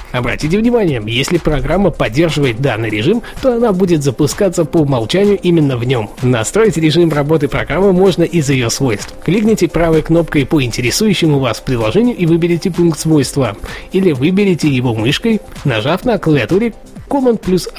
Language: Russian